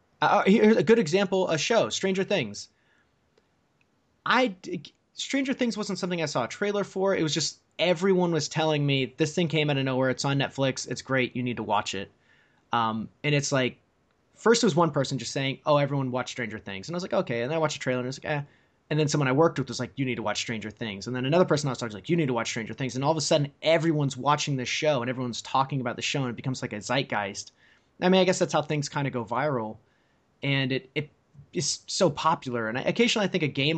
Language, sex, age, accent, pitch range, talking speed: English, male, 20-39, American, 120-155 Hz, 260 wpm